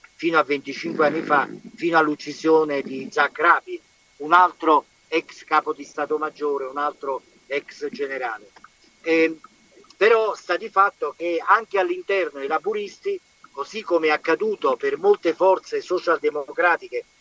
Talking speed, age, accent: 135 wpm, 50-69, native